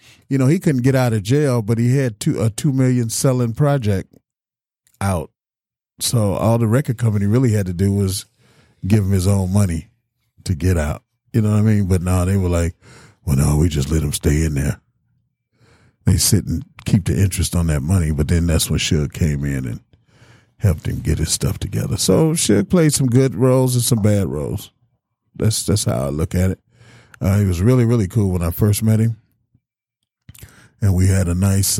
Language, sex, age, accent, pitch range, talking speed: English, male, 40-59, American, 85-115 Hz, 210 wpm